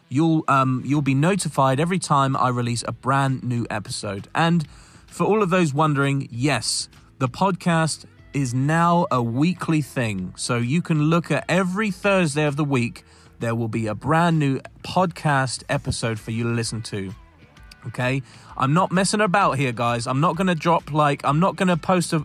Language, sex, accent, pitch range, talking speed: English, male, British, 120-165 Hz, 185 wpm